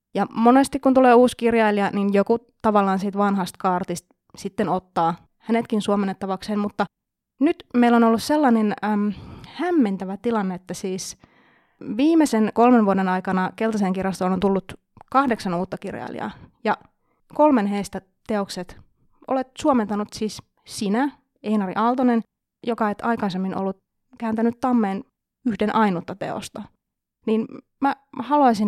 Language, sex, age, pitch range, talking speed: Finnish, female, 20-39, 190-235 Hz, 125 wpm